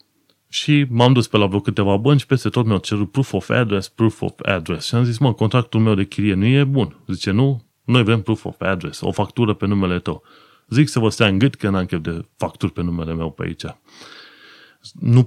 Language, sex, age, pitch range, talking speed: Romanian, male, 30-49, 95-125 Hz, 235 wpm